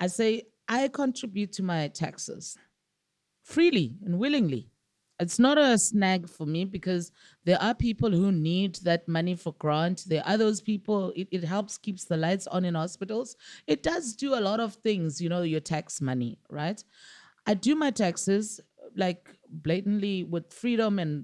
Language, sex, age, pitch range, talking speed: English, female, 30-49, 170-225 Hz, 170 wpm